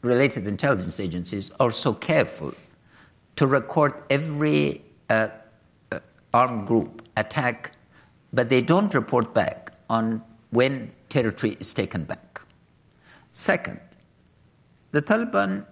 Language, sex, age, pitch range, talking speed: English, male, 60-79, 95-150 Hz, 105 wpm